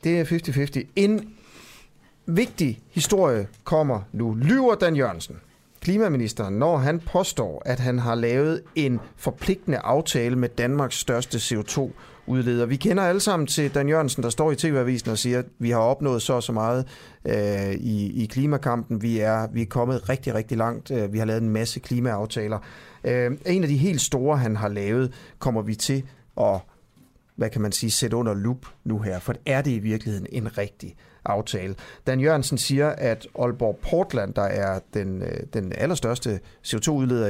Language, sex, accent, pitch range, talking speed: Danish, male, native, 115-150 Hz, 170 wpm